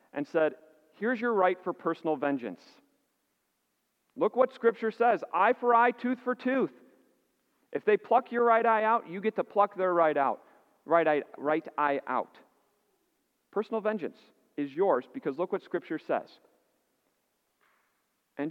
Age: 40-59